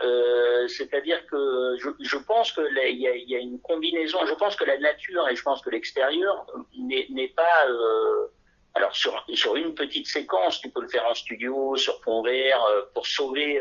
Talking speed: 195 wpm